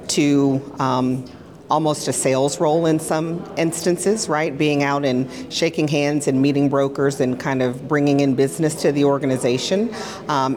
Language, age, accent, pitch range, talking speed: English, 40-59, American, 130-150 Hz, 160 wpm